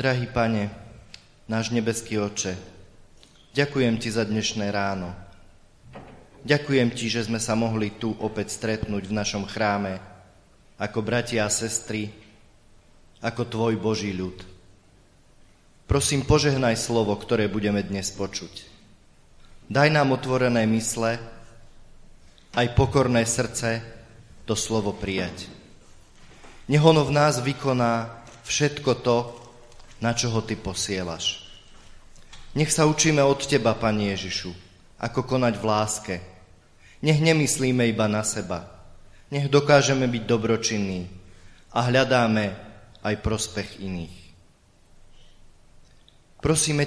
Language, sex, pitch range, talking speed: Slovak, male, 95-120 Hz, 105 wpm